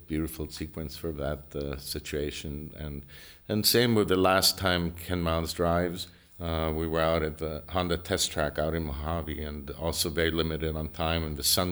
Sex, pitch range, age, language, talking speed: male, 75-85 Hz, 50-69, English, 190 wpm